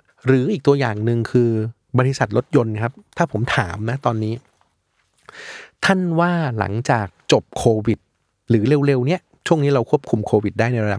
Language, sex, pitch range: Thai, male, 105-135 Hz